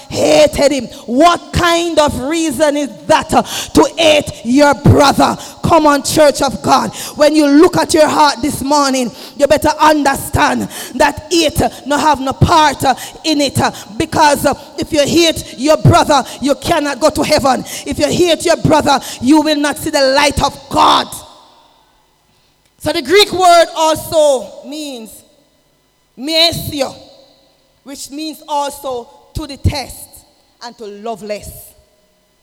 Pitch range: 260-310 Hz